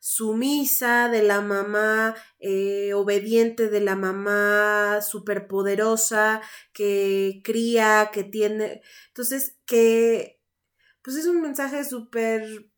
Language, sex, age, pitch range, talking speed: Spanish, female, 20-39, 200-230 Hz, 100 wpm